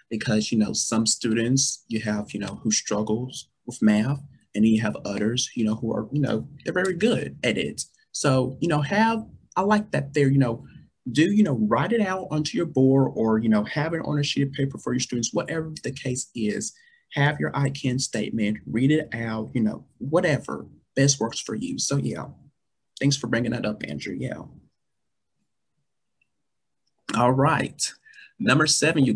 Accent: American